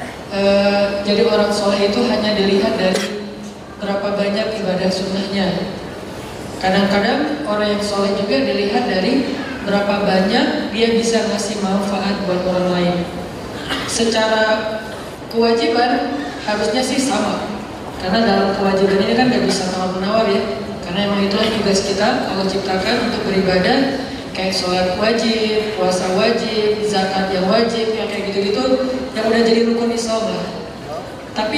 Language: Indonesian